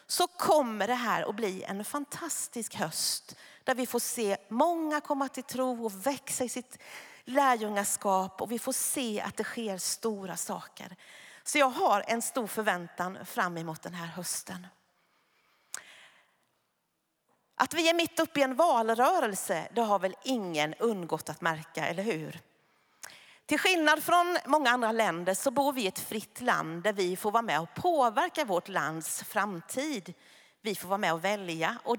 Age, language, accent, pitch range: 40-59, Swedish, native, 185-275 Hz